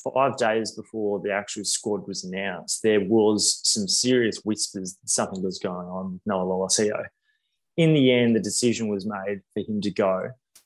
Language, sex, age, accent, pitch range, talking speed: English, male, 20-39, Australian, 100-120 Hz, 180 wpm